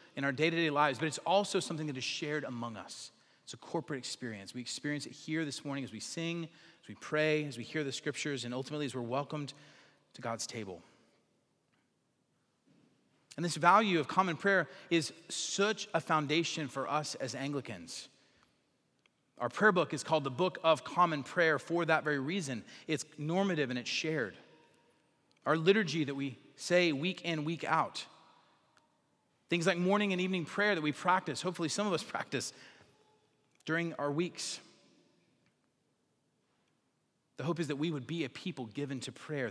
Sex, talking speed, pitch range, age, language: male, 170 wpm, 140-170 Hz, 30-49, English